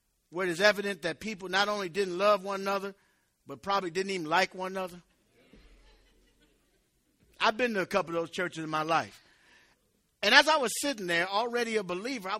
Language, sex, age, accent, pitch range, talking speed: English, male, 50-69, American, 190-290 Hz, 195 wpm